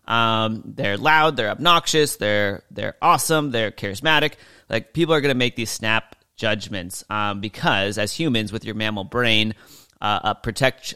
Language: English